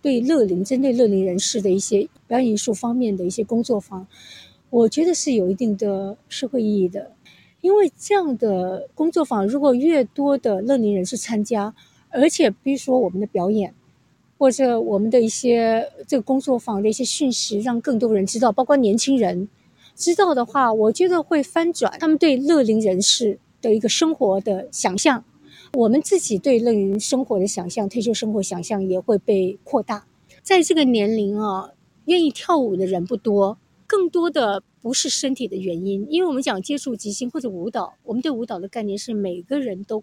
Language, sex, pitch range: Chinese, female, 205-280 Hz